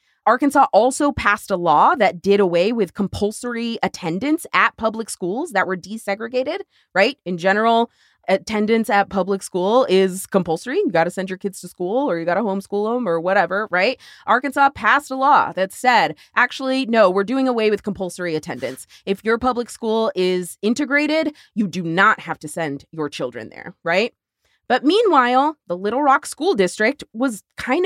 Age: 20-39